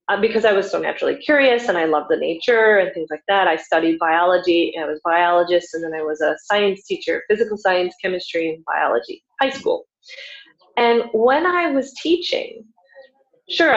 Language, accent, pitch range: English, American, 180-275 Hz